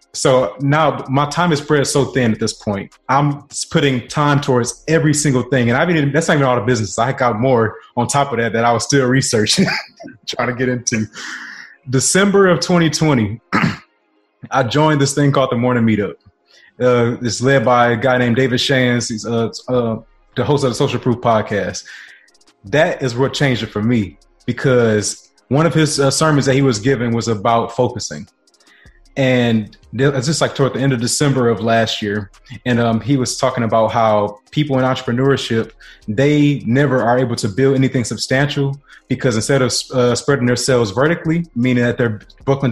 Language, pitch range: English, 115-135 Hz